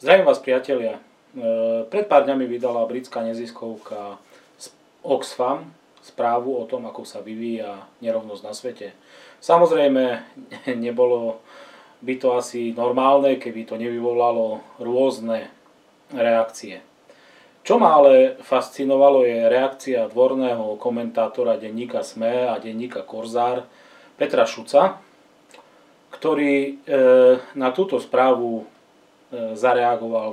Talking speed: 100 wpm